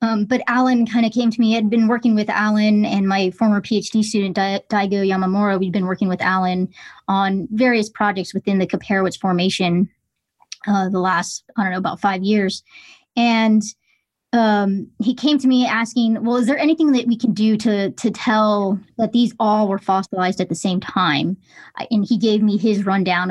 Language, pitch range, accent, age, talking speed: English, 190-225 Hz, American, 20-39, 190 wpm